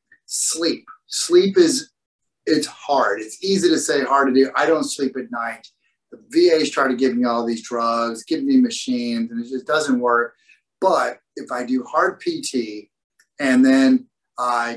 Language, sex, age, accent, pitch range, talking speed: English, male, 30-49, American, 125-205 Hz, 180 wpm